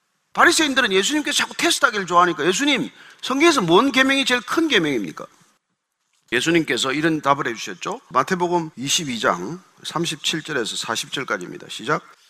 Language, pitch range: Korean, 175-290 Hz